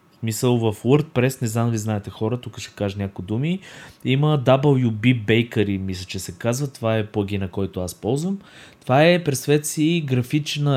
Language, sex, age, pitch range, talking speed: Bulgarian, male, 20-39, 110-145 Hz, 175 wpm